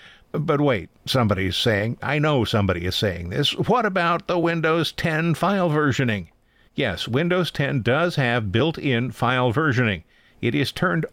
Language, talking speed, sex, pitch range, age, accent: English, 150 wpm, male, 105-150 Hz, 50-69, American